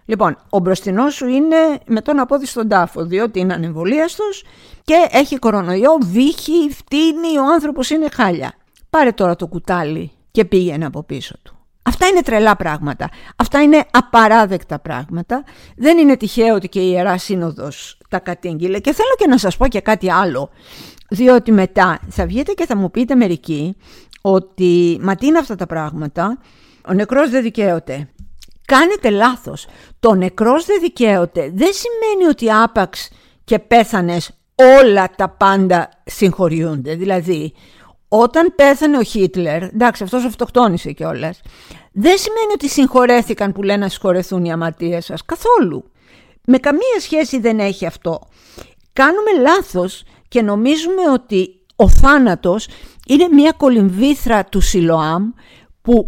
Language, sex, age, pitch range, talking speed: Greek, female, 50-69, 185-280 Hz, 140 wpm